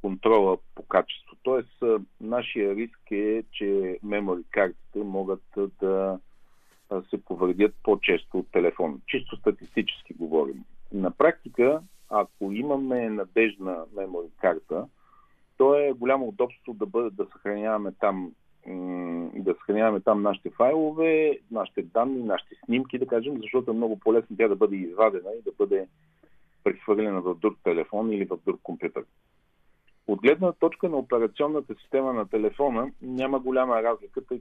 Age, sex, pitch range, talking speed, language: 50-69, male, 100-130 Hz, 135 wpm, Bulgarian